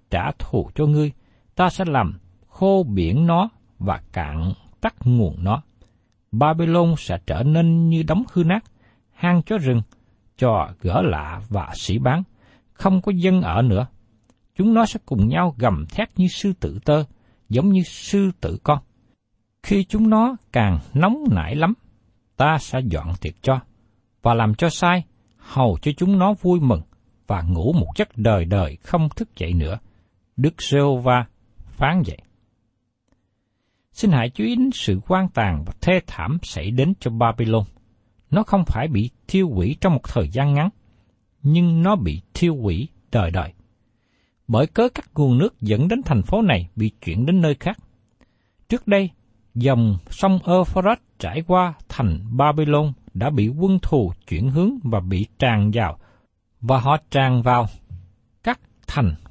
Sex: male